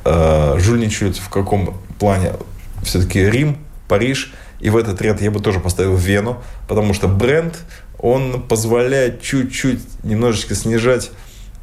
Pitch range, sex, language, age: 95-115 Hz, male, Russian, 20-39